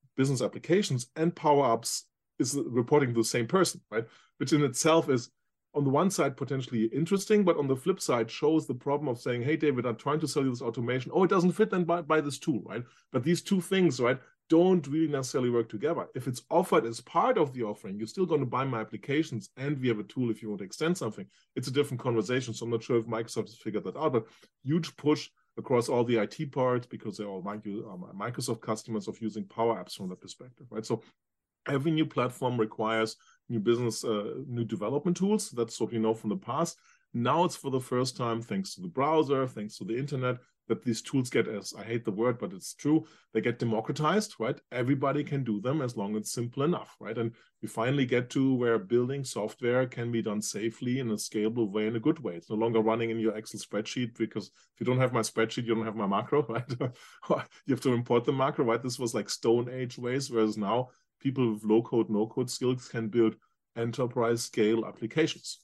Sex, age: male, 30-49